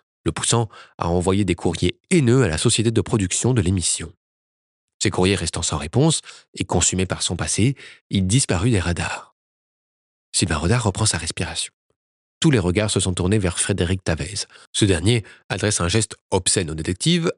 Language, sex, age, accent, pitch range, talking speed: French, male, 30-49, French, 90-125 Hz, 175 wpm